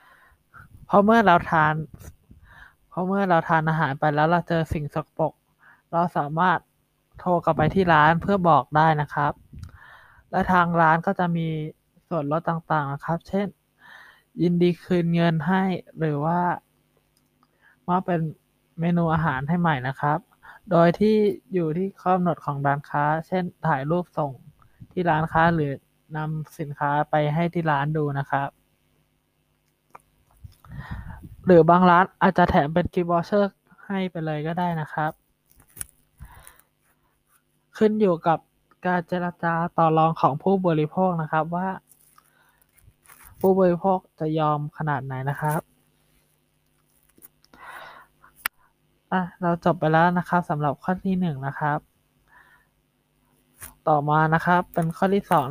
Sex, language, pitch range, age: male, Thai, 150-175 Hz, 20-39